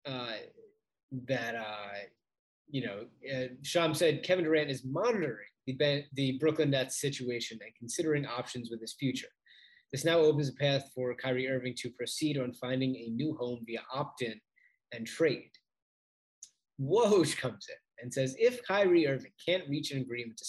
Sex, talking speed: male, 165 wpm